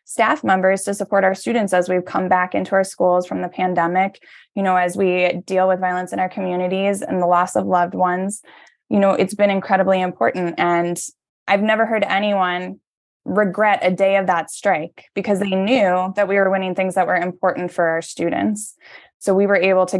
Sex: female